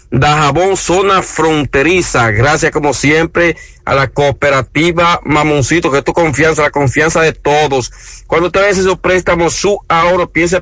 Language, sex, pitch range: Spanish, male, 145-180 Hz